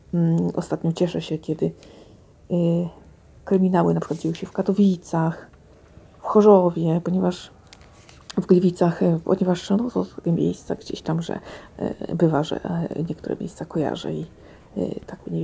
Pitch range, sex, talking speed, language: 160-180 Hz, female, 115 wpm, Polish